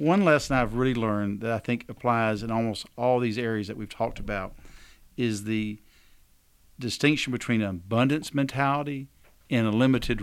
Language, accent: English, American